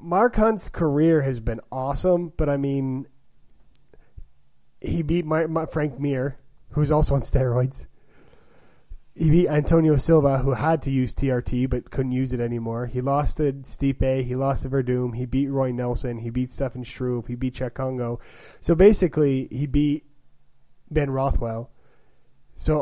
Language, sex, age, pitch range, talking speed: English, male, 20-39, 120-150 Hz, 160 wpm